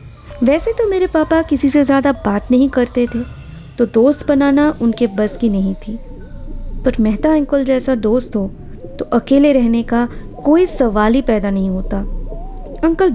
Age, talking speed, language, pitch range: 20-39, 165 wpm, Hindi, 215-290 Hz